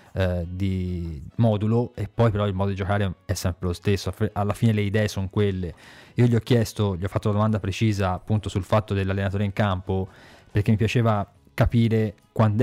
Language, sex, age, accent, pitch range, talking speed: Italian, male, 20-39, native, 95-110 Hz, 190 wpm